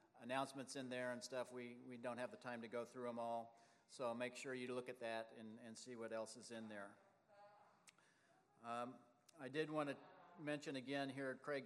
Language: English